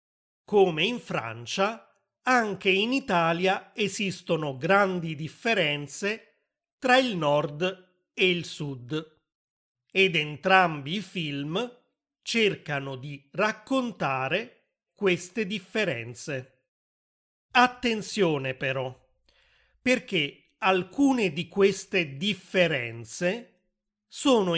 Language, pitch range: Italian, 160-210 Hz